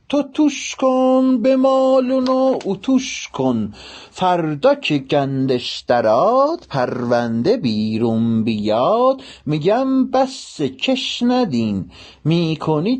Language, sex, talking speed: Persian, male, 85 wpm